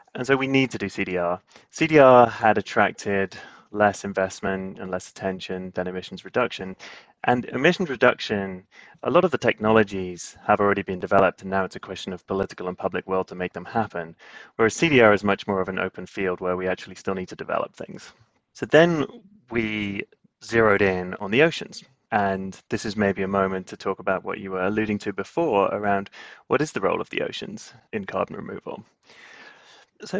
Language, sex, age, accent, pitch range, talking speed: English, male, 20-39, British, 95-120 Hz, 190 wpm